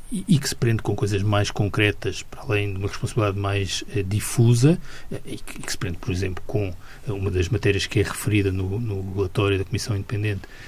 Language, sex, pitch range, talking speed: Portuguese, male, 100-125 Hz, 200 wpm